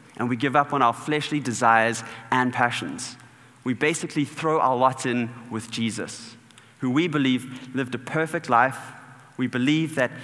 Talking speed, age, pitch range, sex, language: 165 wpm, 30-49, 120-145 Hz, male, English